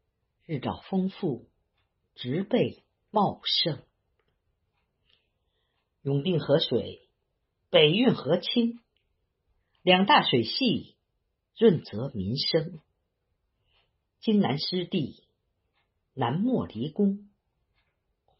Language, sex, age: Chinese, female, 50-69